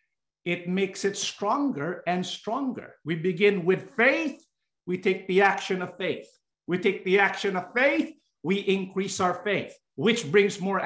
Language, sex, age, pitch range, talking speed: English, male, 50-69, 180-220 Hz, 160 wpm